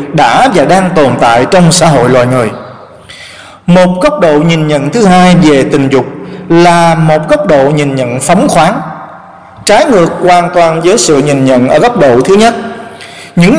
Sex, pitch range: male, 145-200 Hz